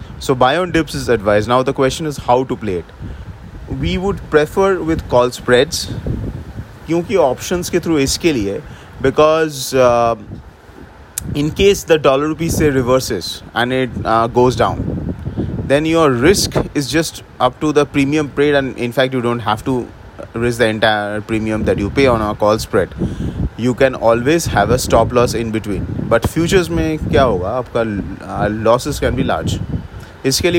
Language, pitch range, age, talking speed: English, 110-145 Hz, 30-49, 170 wpm